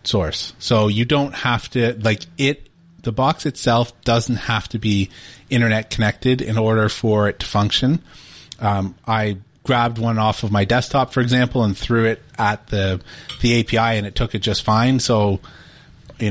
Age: 30-49